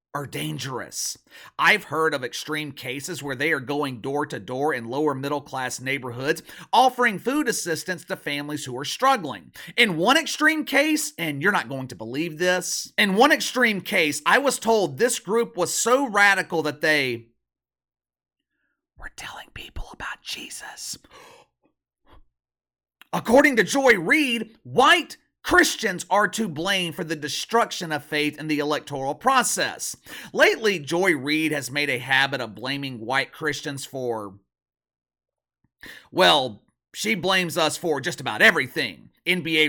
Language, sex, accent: English, male, American